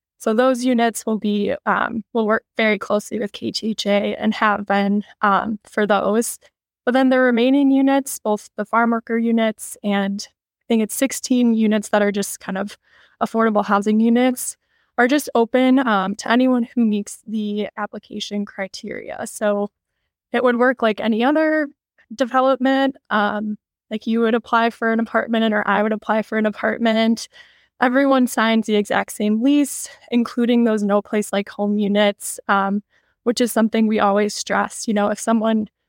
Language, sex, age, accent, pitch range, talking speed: English, female, 10-29, American, 210-245 Hz, 165 wpm